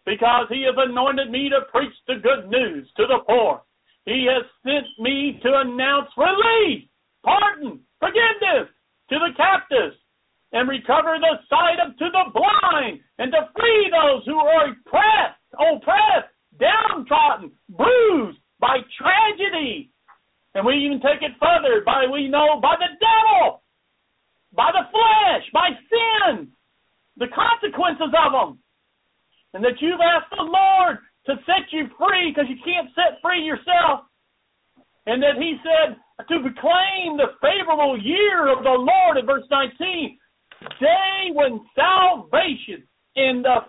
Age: 50-69